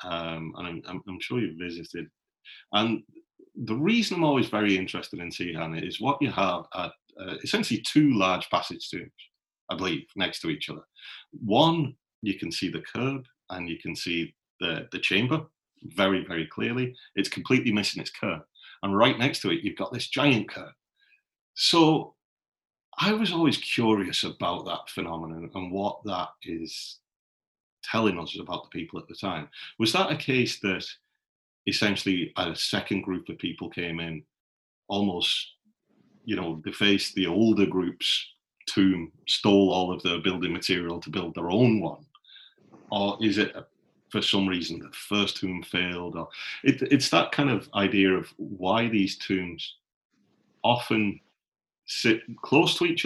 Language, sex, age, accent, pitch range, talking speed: English, male, 40-59, British, 90-135 Hz, 160 wpm